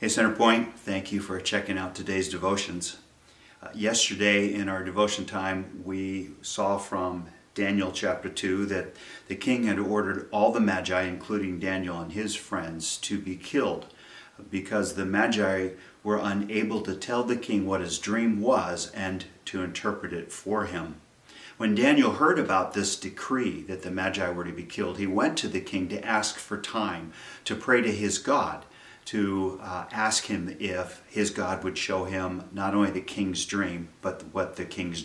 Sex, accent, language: male, American, English